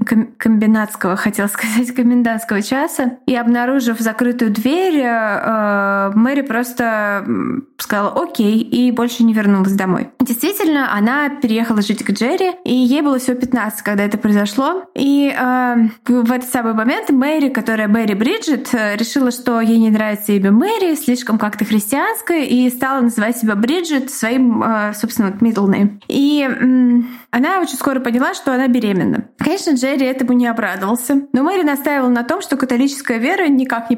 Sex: female